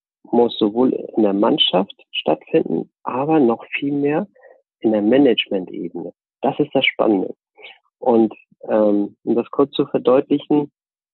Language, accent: German, German